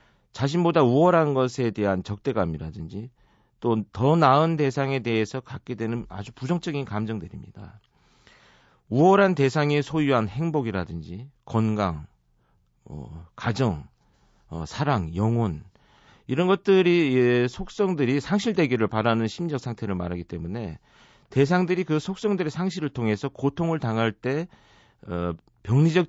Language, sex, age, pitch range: Korean, male, 40-59, 105-160 Hz